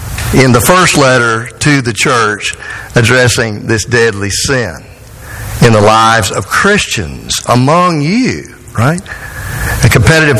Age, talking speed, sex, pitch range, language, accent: 50-69, 120 wpm, male, 110-140 Hz, English, American